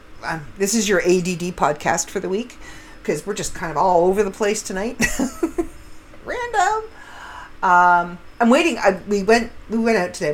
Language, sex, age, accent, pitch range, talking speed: English, female, 50-69, American, 160-225 Hz, 165 wpm